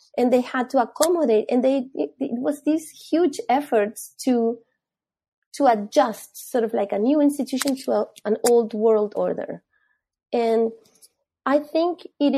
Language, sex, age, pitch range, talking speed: English, female, 30-49, 215-260 Hz, 150 wpm